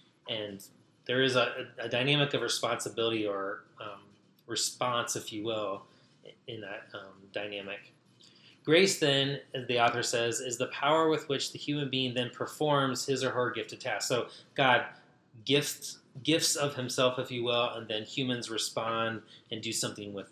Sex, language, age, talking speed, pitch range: male, English, 20-39, 170 wpm, 110-140 Hz